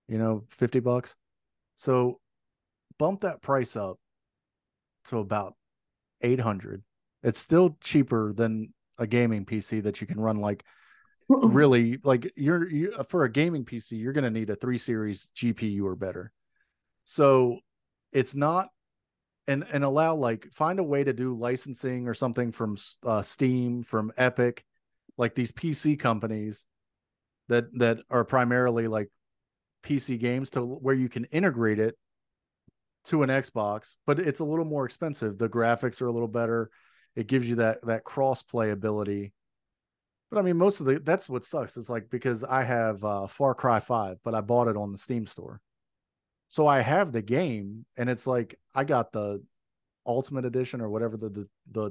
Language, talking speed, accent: English, 170 wpm, American